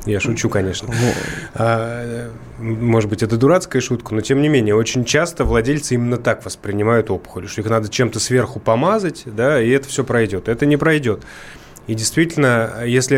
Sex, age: male, 20-39